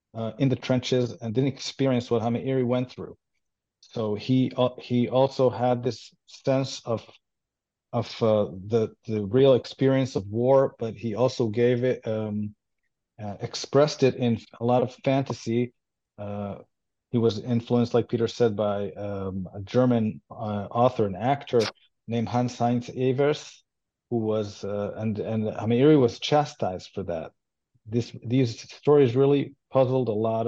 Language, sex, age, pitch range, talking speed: English, male, 40-59, 110-130 Hz, 155 wpm